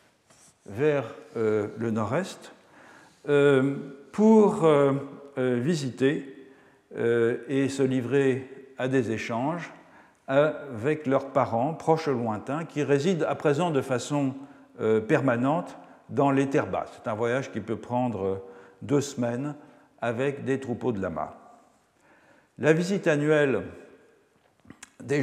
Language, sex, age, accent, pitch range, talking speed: French, male, 60-79, French, 120-155 Hz, 115 wpm